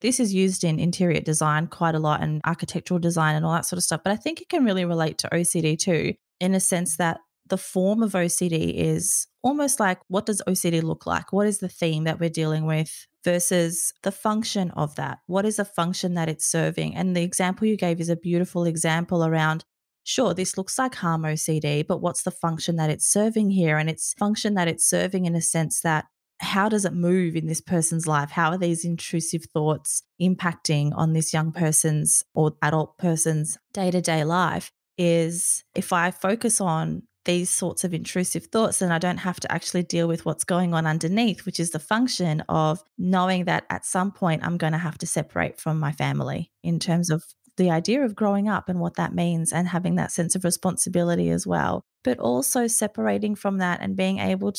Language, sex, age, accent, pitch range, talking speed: English, female, 20-39, Australian, 160-190 Hz, 210 wpm